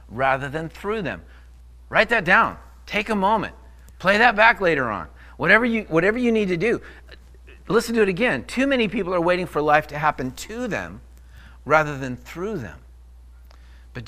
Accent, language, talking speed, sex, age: American, English, 180 wpm, male, 50-69